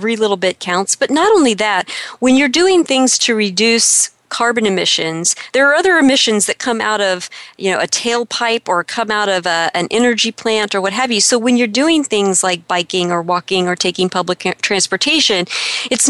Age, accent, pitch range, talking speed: 40-59, American, 190-235 Hz, 200 wpm